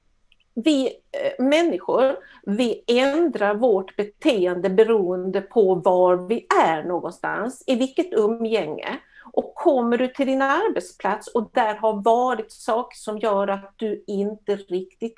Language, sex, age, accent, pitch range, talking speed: Swedish, female, 50-69, native, 195-265 Hz, 125 wpm